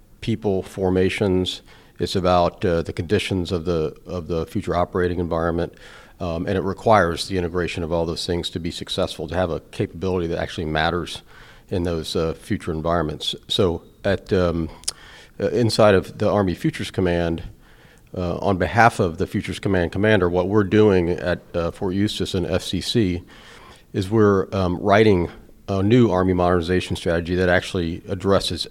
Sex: male